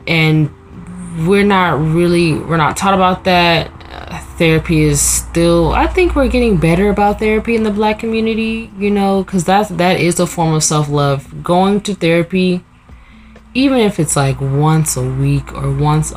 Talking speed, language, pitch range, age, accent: 165 wpm, English, 140-180 Hz, 10-29, American